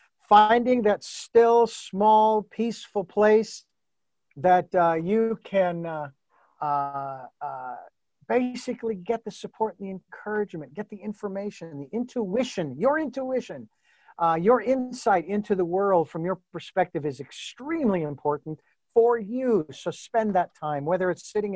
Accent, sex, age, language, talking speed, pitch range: American, male, 50-69, English, 130 wpm, 165-230 Hz